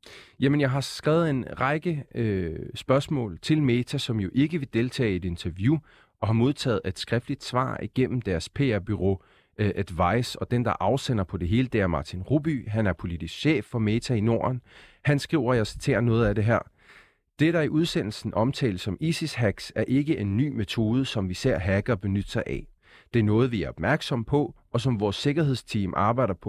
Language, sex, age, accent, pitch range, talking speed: Danish, male, 30-49, native, 95-135 Hz, 200 wpm